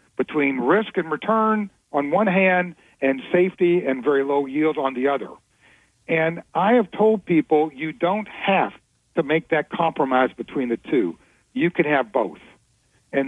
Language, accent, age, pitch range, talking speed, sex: English, American, 50-69, 145-175 Hz, 165 wpm, male